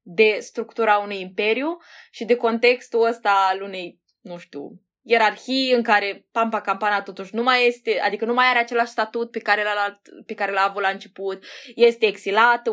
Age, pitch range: 20-39, 195-235 Hz